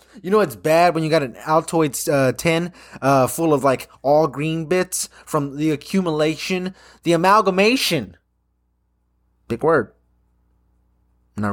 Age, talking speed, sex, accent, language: 20-39, 135 wpm, male, American, English